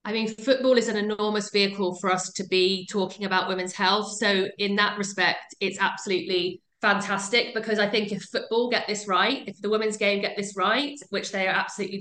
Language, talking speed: English, 205 wpm